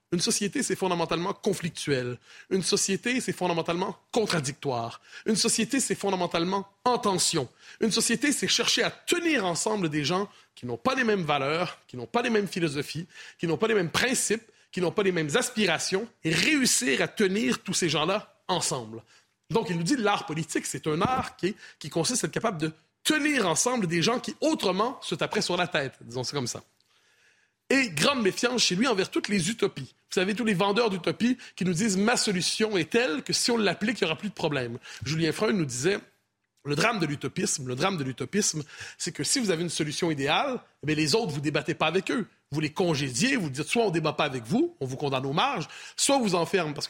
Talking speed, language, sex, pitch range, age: 225 wpm, French, male, 160-220 Hz, 30-49